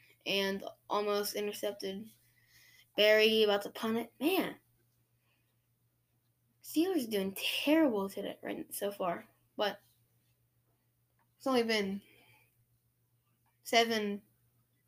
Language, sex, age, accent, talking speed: English, female, 10-29, American, 85 wpm